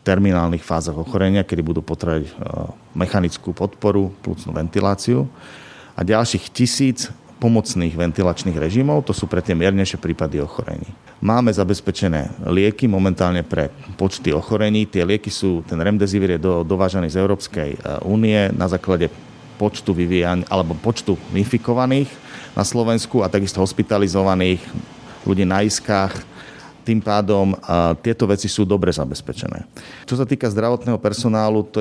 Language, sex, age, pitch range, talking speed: Slovak, male, 40-59, 90-105 Hz, 130 wpm